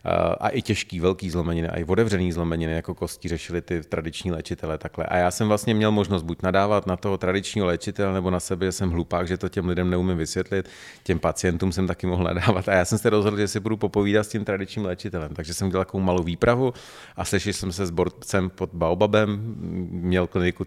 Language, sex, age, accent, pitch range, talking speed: Czech, male, 40-59, native, 85-100 Hz, 215 wpm